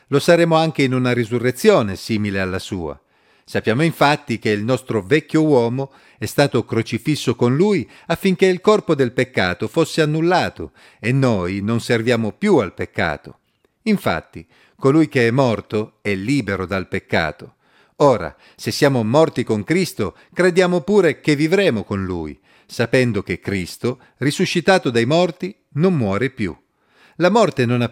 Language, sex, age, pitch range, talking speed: Italian, male, 50-69, 105-155 Hz, 150 wpm